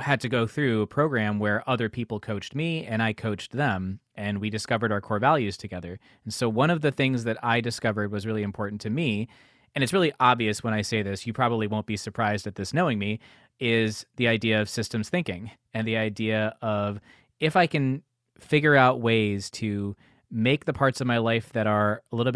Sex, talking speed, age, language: male, 215 wpm, 20-39, English